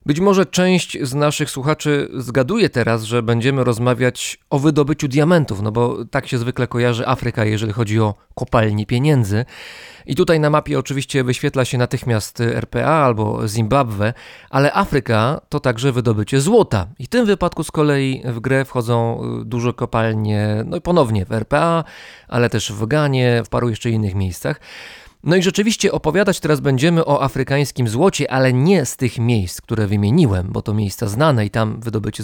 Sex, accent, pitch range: male, native, 115-155 Hz